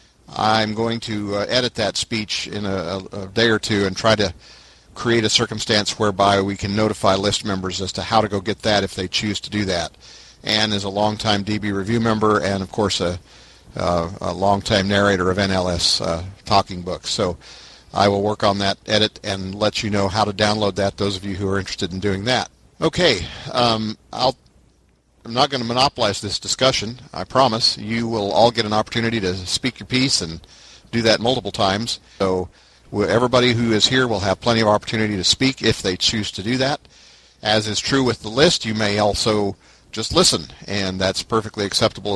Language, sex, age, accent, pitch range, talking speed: English, male, 50-69, American, 95-115 Hz, 200 wpm